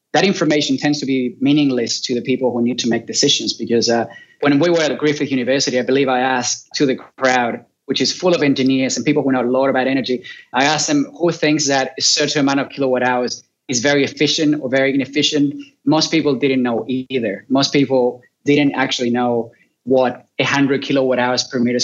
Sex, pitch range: male, 125-145 Hz